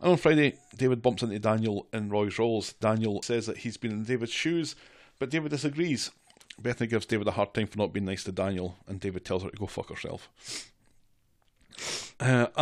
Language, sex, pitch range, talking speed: English, male, 100-120 Hz, 200 wpm